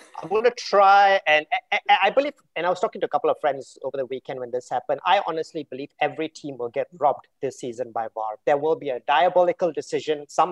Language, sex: English, male